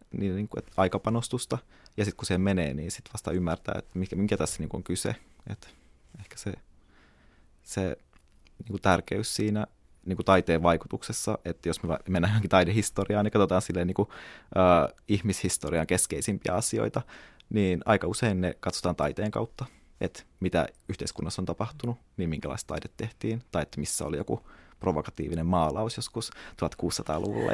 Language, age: Finnish, 20-39